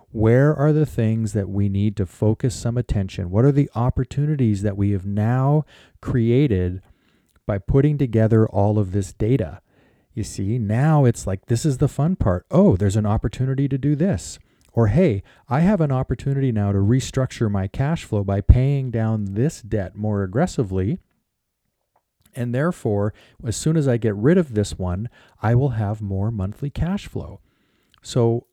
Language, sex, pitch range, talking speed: English, male, 100-130 Hz, 175 wpm